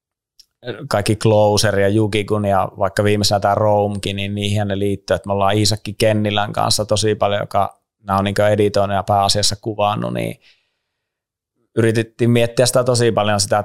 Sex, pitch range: male, 100-110 Hz